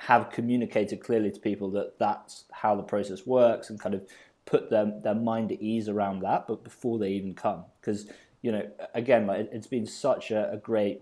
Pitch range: 100-115 Hz